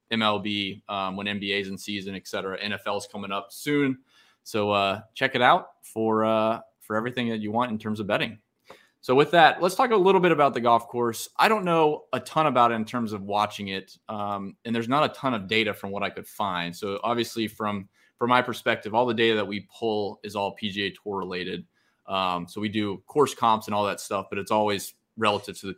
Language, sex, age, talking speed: English, male, 20-39, 230 wpm